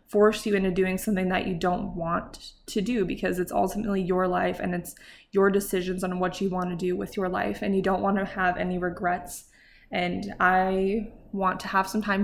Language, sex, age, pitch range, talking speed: English, female, 20-39, 185-225 Hz, 215 wpm